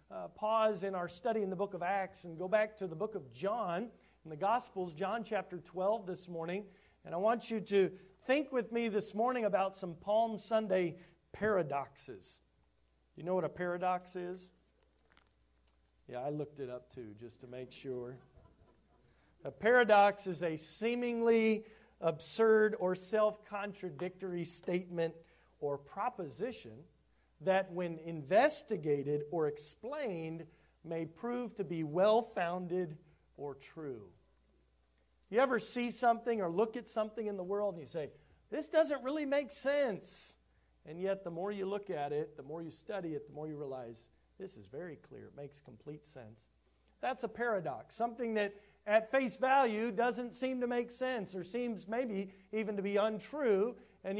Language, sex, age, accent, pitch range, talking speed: English, male, 40-59, American, 160-220 Hz, 160 wpm